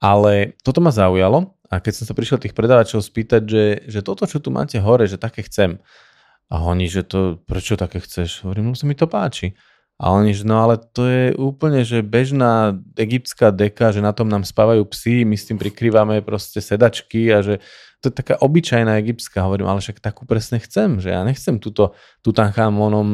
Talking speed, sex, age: 195 wpm, male, 20-39